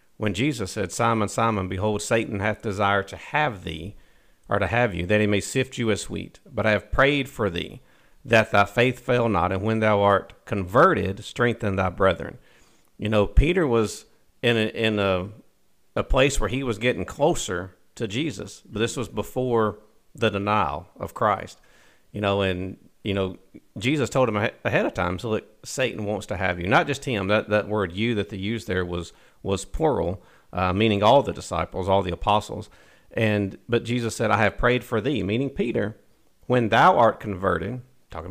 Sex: male